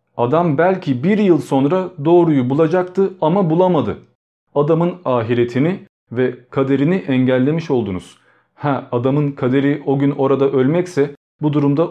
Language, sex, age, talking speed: Turkish, male, 40-59, 120 wpm